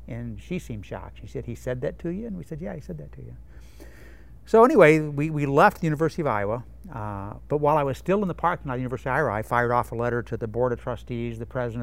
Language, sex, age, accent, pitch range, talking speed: English, male, 60-79, American, 110-145 Hz, 285 wpm